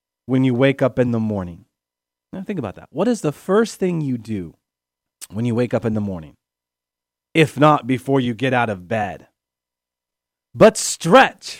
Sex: male